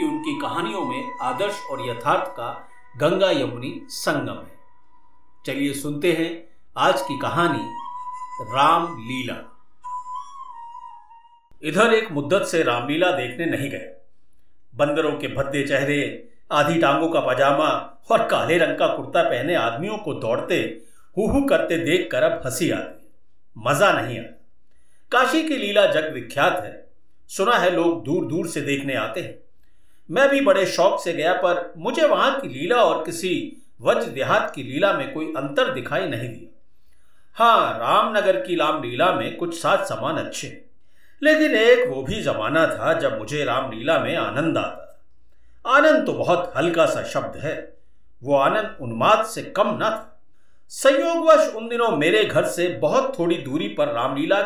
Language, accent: Hindi, native